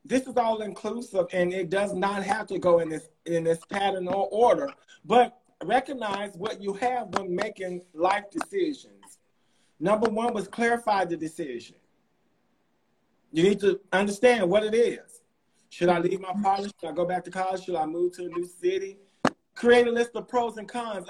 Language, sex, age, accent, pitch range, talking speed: English, male, 40-59, American, 185-240 Hz, 185 wpm